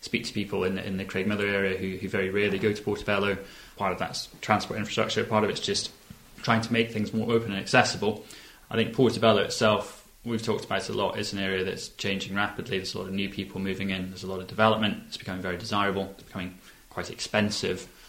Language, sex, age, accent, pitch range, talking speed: English, male, 20-39, British, 95-110 Hz, 235 wpm